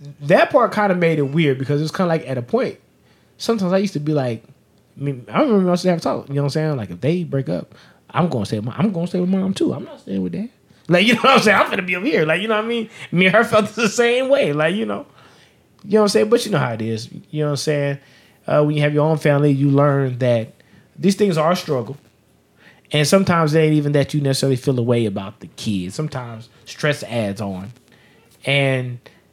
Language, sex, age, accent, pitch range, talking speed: English, male, 20-39, American, 130-180 Hz, 280 wpm